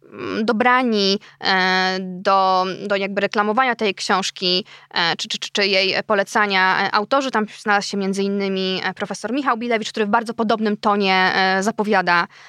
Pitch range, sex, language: 195-240 Hz, female, Polish